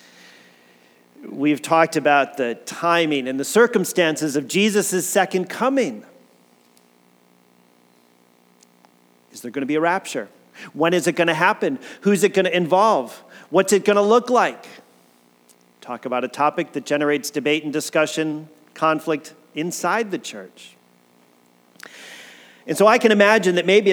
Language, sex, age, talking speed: English, male, 40-59, 140 wpm